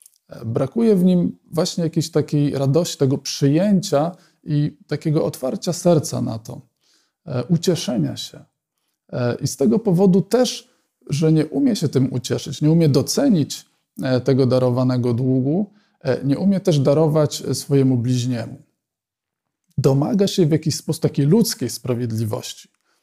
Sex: male